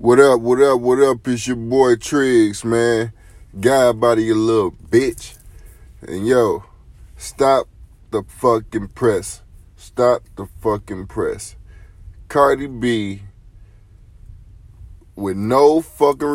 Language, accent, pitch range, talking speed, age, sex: English, American, 90-125 Hz, 115 wpm, 20-39, male